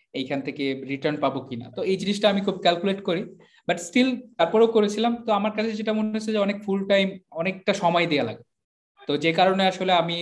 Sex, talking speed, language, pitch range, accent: male, 210 wpm, Bengali, 155-210 Hz, native